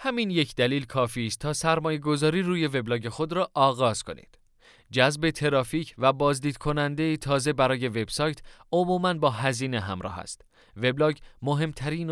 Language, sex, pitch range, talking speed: Persian, male, 115-150 Hz, 140 wpm